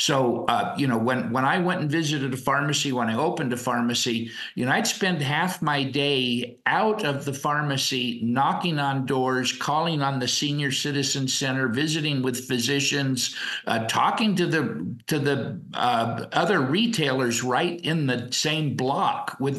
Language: English